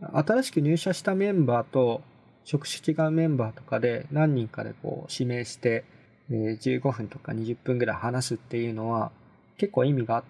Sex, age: male, 20-39